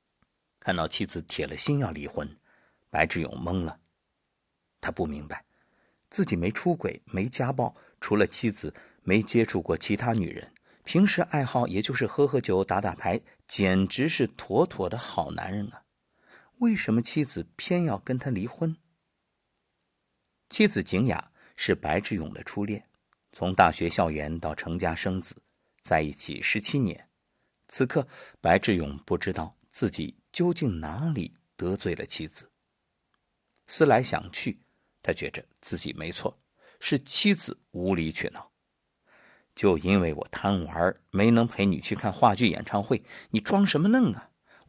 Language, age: Chinese, 50-69